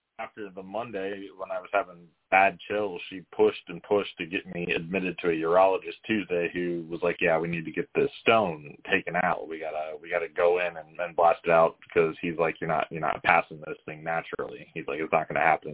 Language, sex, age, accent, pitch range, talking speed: English, male, 30-49, American, 85-105 Hz, 235 wpm